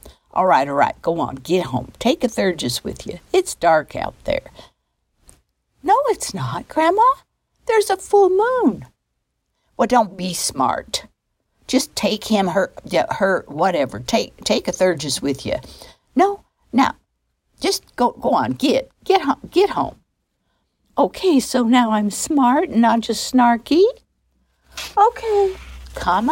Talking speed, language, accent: 145 wpm, English, American